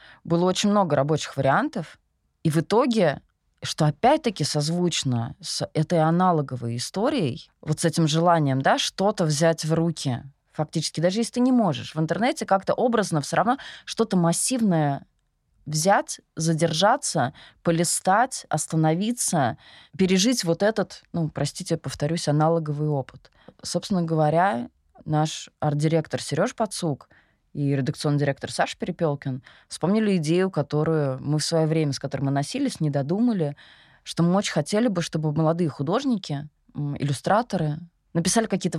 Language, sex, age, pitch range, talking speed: Russian, female, 20-39, 150-185 Hz, 130 wpm